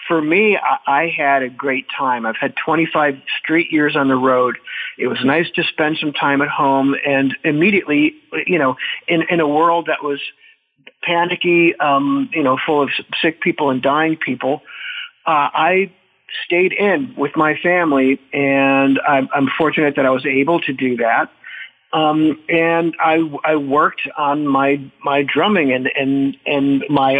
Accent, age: American, 40-59